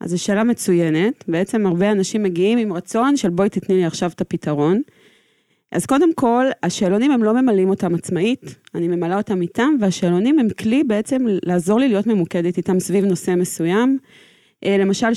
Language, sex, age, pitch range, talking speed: Hebrew, female, 30-49, 190-235 Hz, 170 wpm